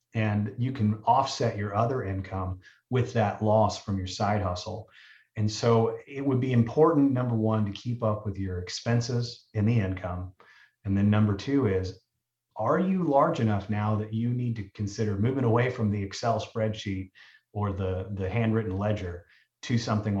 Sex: male